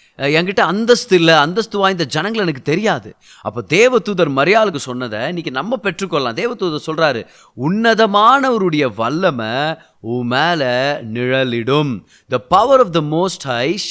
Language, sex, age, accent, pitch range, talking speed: Tamil, male, 30-49, native, 135-205 Hz, 120 wpm